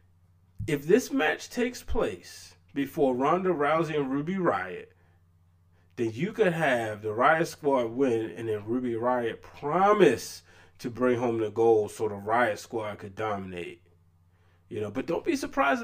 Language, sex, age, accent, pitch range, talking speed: English, male, 20-39, American, 105-175 Hz, 155 wpm